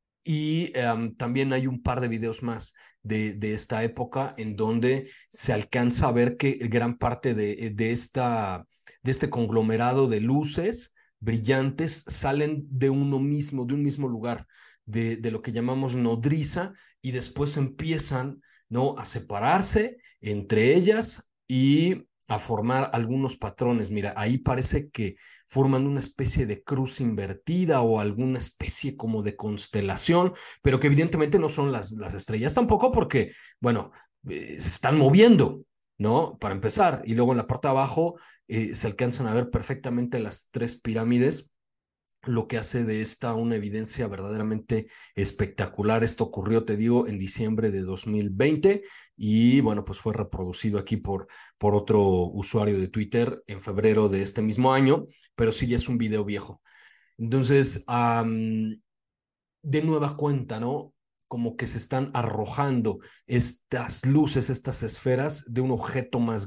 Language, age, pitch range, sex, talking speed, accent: Spanish, 40-59, 110-135 Hz, male, 150 wpm, Mexican